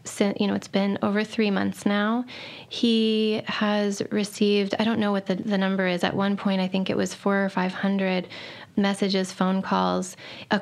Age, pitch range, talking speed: 20-39, 190-215 Hz, 185 wpm